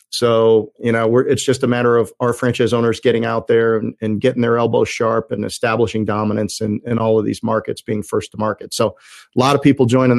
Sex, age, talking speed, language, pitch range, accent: male, 40-59, 240 wpm, English, 110-125 Hz, American